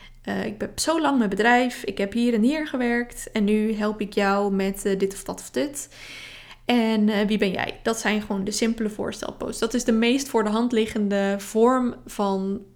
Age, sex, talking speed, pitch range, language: 20-39, female, 215 wpm, 210-255 Hz, Dutch